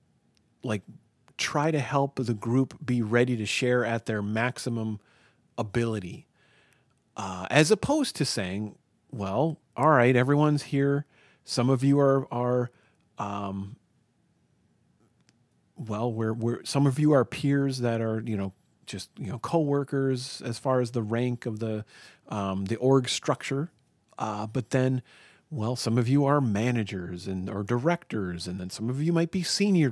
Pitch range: 110-140 Hz